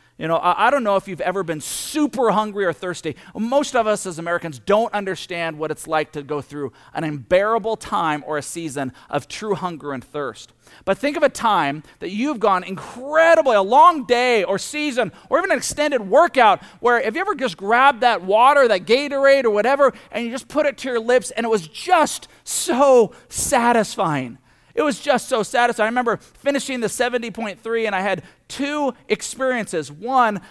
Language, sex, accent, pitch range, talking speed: English, male, American, 155-240 Hz, 195 wpm